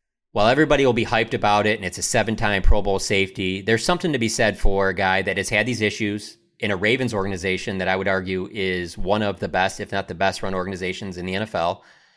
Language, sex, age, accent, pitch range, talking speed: English, male, 30-49, American, 95-110 Hz, 235 wpm